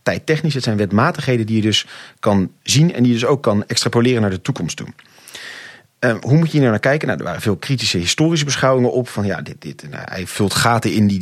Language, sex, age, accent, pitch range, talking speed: Dutch, male, 40-59, Dutch, 105-130 Hz, 250 wpm